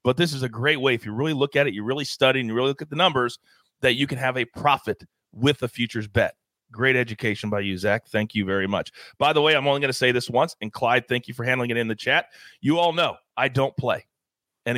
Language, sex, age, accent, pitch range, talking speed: English, male, 40-59, American, 125-190 Hz, 275 wpm